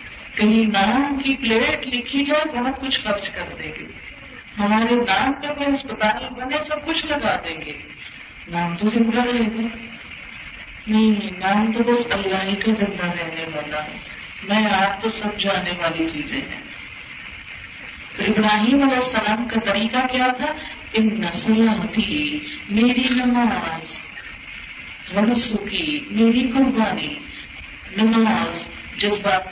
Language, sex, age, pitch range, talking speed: Urdu, female, 50-69, 205-255 Hz, 125 wpm